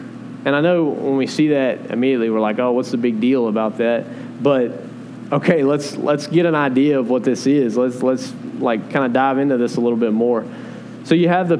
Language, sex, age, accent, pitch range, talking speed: English, male, 20-39, American, 120-160 Hz, 230 wpm